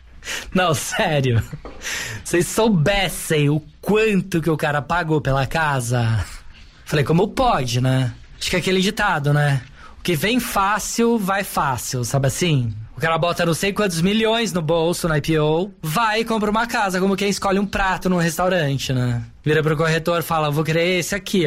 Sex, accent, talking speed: male, Brazilian, 180 wpm